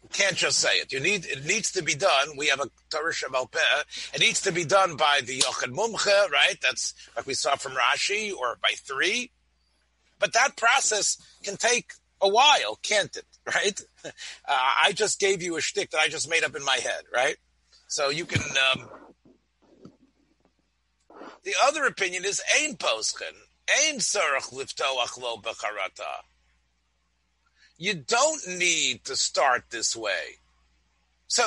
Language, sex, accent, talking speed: English, male, American, 155 wpm